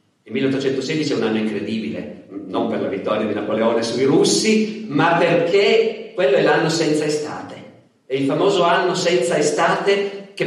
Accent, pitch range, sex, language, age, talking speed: native, 140-180 Hz, male, Italian, 40-59, 160 wpm